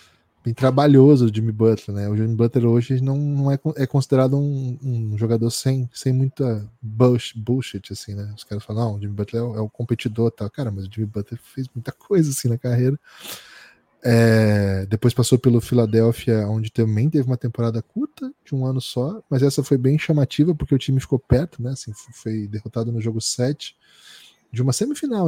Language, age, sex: Portuguese, 10-29, male